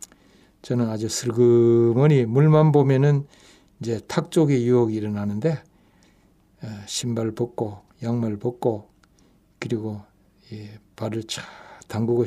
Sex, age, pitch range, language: male, 60-79, 105-135 Hz, Korean